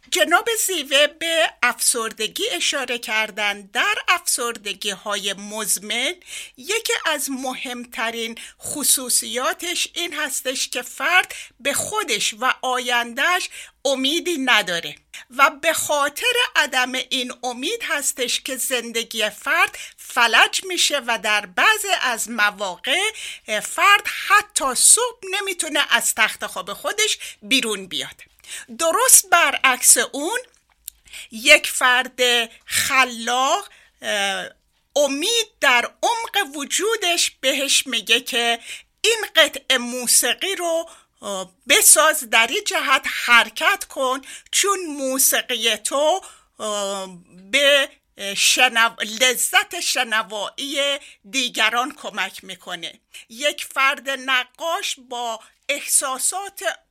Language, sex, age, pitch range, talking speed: Persian, female, 50-69, 235-335 Hz, 95 wpm